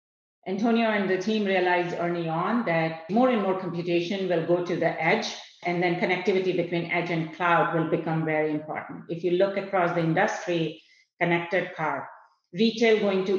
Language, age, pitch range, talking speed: English, 50-69, 165-195 Hz, 175 wpm